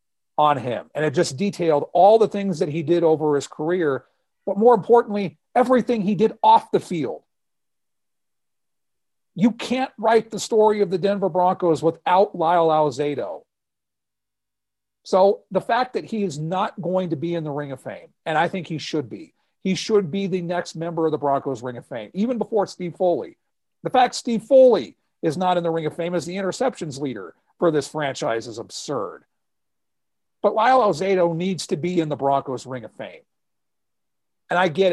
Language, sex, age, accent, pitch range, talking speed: English, male, 40-59, American, 160-215 Hz, 185 wpm